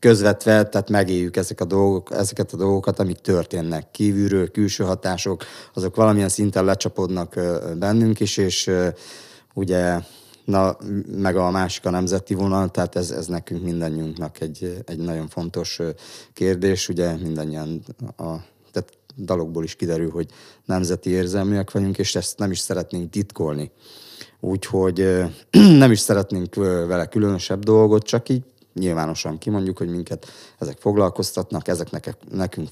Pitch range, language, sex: 90-105 Hz, Hungarian, male